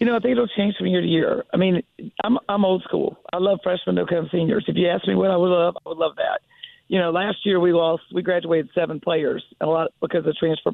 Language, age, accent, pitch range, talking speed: English, 40-59, American, 165-195 Hz, 275 wpm